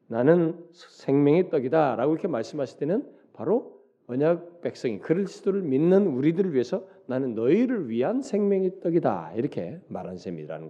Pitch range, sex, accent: 120-175 Hz, male, native